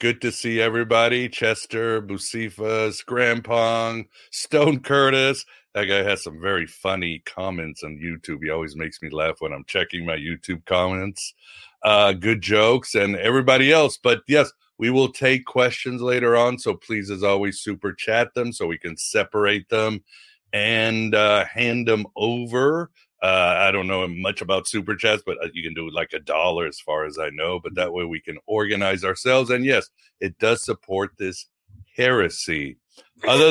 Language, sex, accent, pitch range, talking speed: English, male, American, 95-120 Hz, 170 wpm